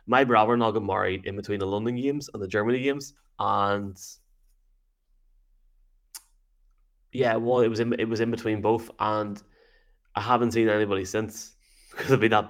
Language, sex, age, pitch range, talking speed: English, male, 20-39, 100-120 Hz, 165 wpm